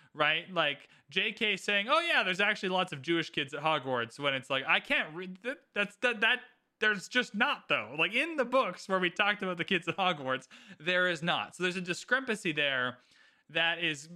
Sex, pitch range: male, 150-200 Hz